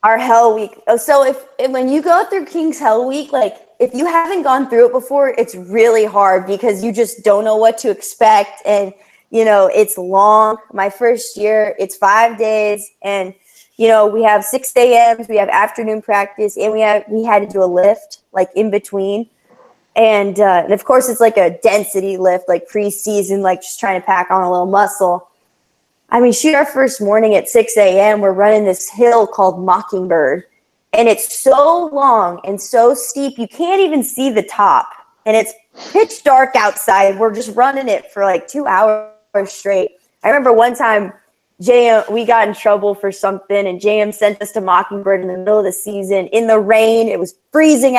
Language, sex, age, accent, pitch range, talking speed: English, female, 20-39, American, 200-240 Hz, 200 wpm